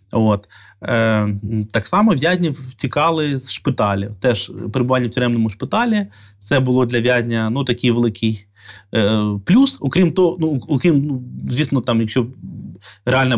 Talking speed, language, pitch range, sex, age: 135 wpm, Ukrainian, 110-145 Hz, male, 20-39